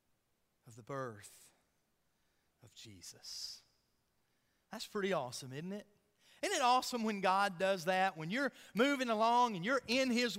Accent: American